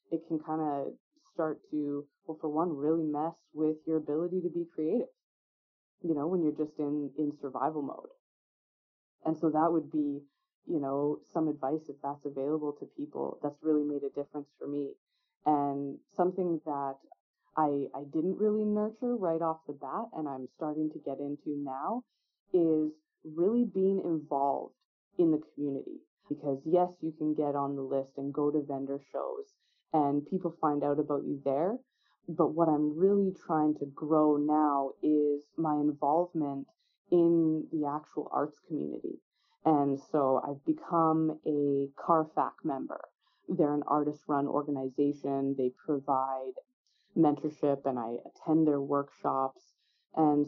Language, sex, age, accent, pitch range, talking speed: English, female, 20-39, American, 145-165 Hz, 155 wpm